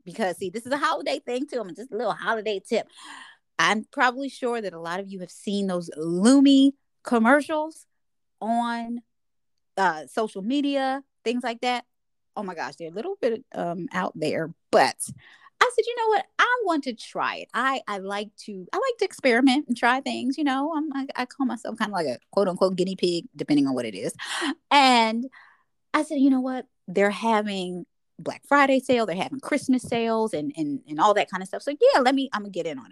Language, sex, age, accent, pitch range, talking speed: English, female, 20-39, American, 190-265 Hz, 215 wpm